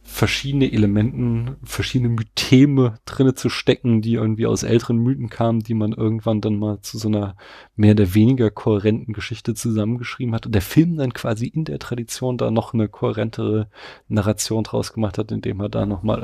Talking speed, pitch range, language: 180 wpm, 105-130 Hz, German